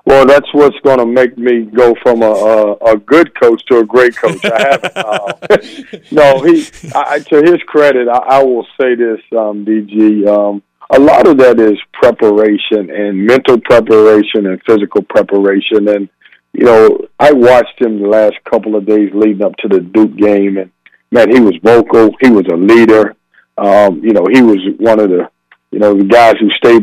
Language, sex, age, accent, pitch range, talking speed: English, male, 50-69, American, 105-120 Hz, 195 wpm